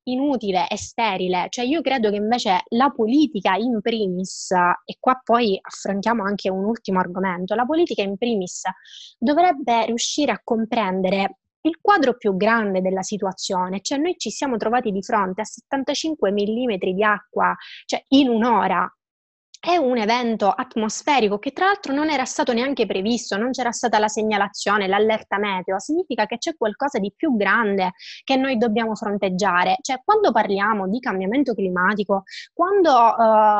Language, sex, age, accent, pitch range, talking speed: Italian, female, 20-39, native, 200-255 Hz, 155 wpm